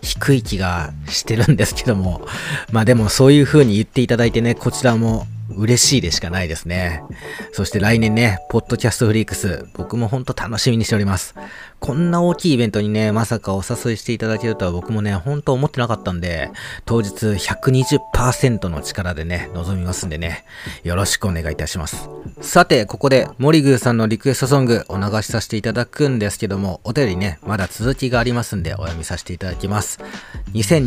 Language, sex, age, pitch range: Japanese, male, 40-59, 95-120 Hz